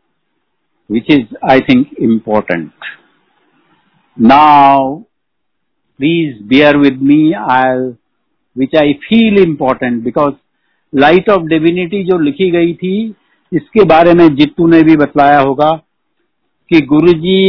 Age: 60-79